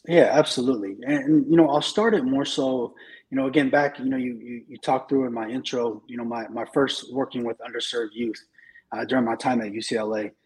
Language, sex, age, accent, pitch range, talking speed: English, male, 20-39, American, 115-135 Hz, 225 wpm